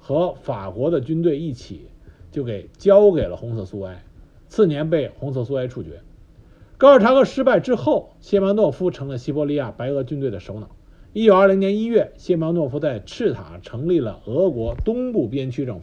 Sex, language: male, Chinese